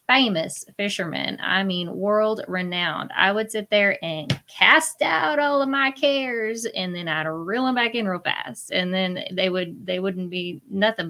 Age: 20-39